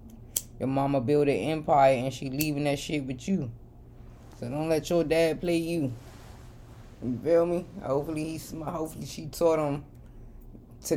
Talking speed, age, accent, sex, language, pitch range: 160 wpm, 20-39, American, female, English, 125-160 Hz